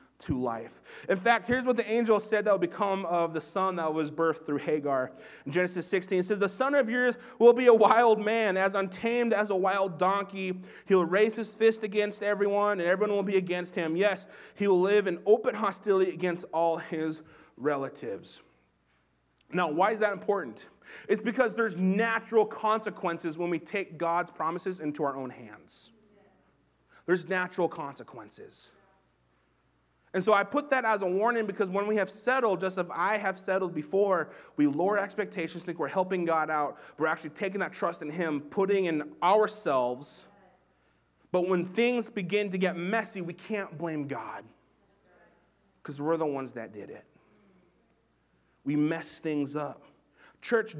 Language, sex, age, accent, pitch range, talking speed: English, male, 30-49, American, 160-210 Hz, 170 wpm